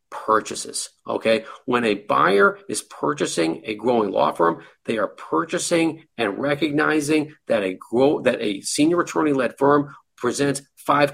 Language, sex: English, male